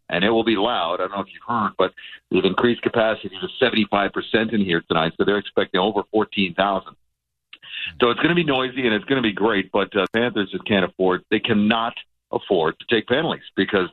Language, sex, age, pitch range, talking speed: English, male, 50-69, 100-120 Hz, 215 wpm